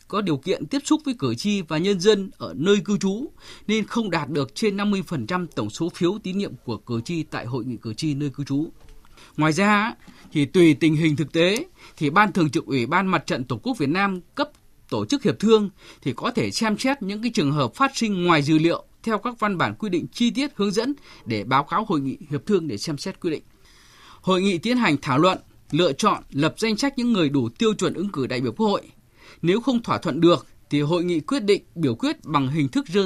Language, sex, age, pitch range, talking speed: Vietnamese, male, 20-39, 145-205 Hz, 245 wpm